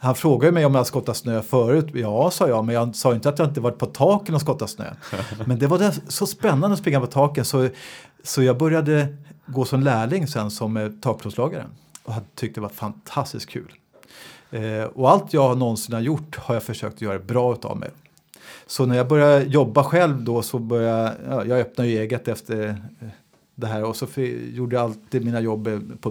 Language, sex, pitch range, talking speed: Swedish, male, 115-140 Hz, 200 wpm